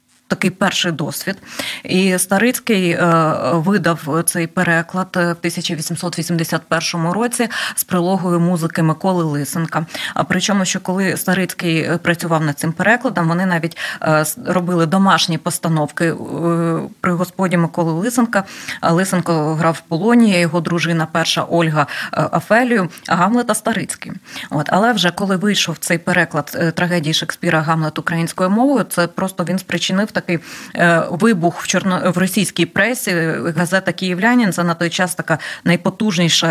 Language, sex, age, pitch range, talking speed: Ukrainian, female, 20-39, 165-190 Hz, 130 wpm